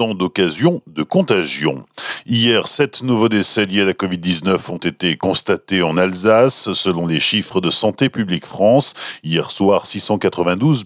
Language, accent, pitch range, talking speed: French, French, 95-125 Hz, 145 wpm